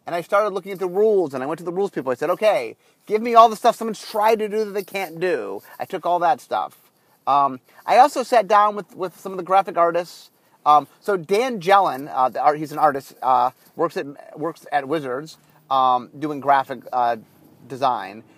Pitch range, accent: 145-210 Hz, American